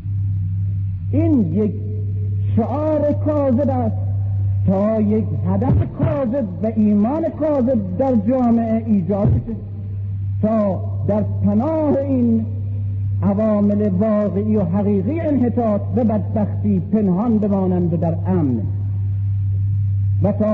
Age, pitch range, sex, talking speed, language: 50-69, 95-110 Hz, male, 95 wpm, Persian